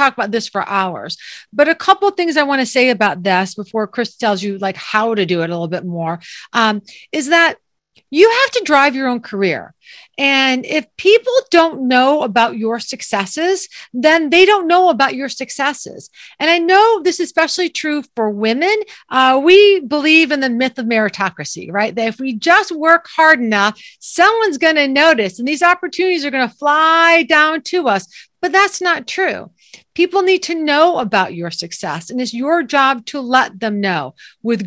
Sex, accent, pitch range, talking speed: female, American, 225-335 Hz, 190 wpm